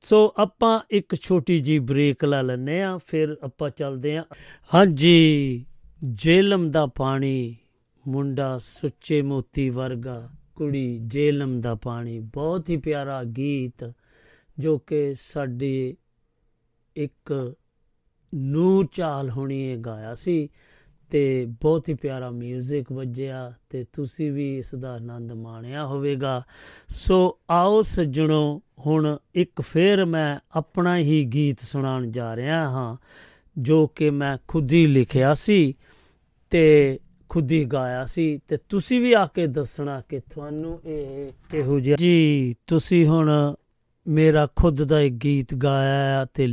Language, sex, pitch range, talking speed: Punjabi, male, 130-160 Hz, 125 wpm